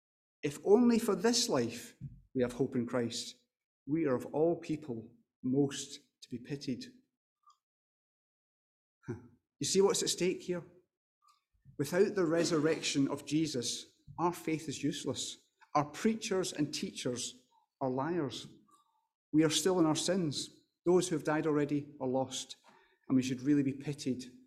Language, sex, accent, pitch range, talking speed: English, male, British, 130-180 Hz, 145 wpm